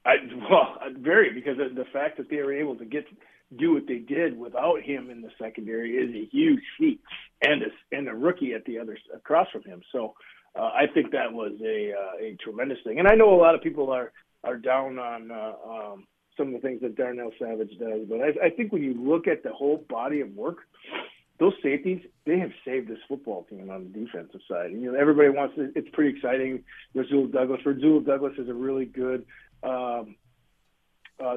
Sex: male